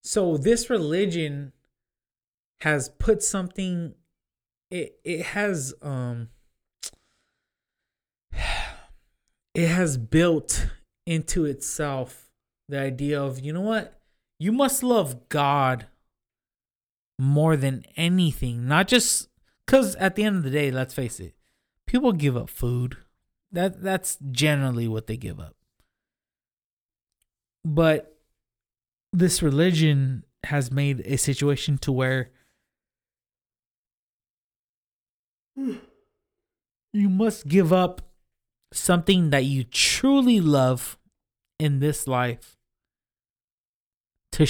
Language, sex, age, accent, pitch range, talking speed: English, male, 20-39, American, 125-180 Hz, 100 wpm